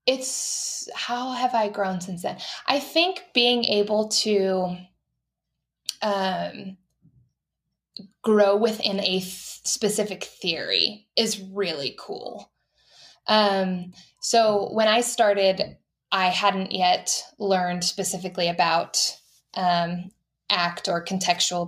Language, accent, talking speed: English, American, 100 wpm